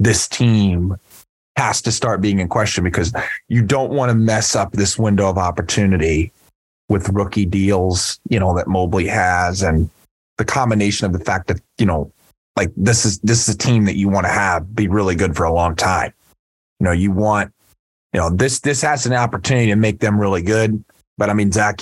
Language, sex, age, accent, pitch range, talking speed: English, male, 30-49, American, 95-115 Hz, 205 wpm